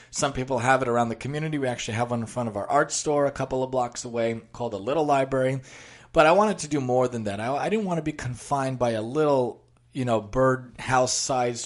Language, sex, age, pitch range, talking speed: English, male, 30-49, 120-145 Hz, 240 wpm